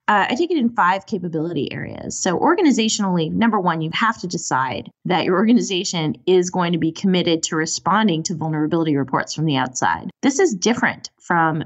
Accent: American